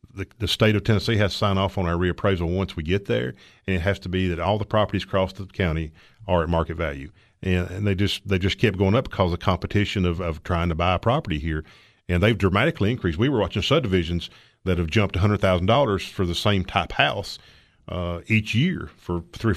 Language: English